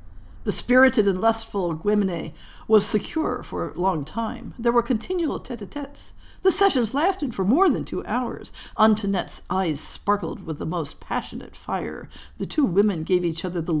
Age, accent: 60-79, American